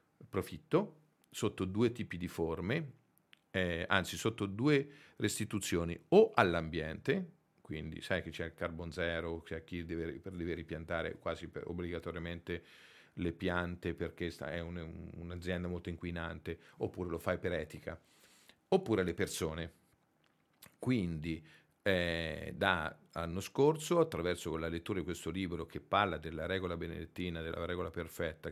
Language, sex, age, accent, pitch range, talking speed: Italian, male, 50-69, native, 85-95 Hz, 140 wpm